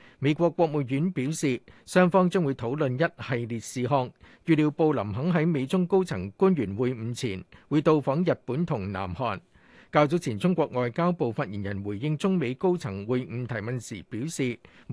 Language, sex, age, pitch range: Chinese, male, 50-69, 120-170 Hz